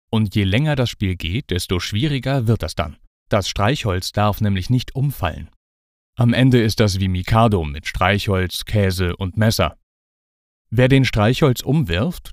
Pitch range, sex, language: 95-120 Hz, male, German